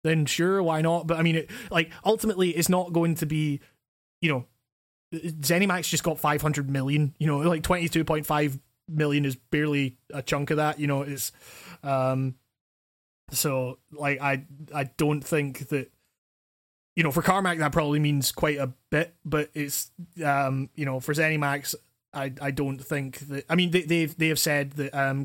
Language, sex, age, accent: English, male, 20-39, British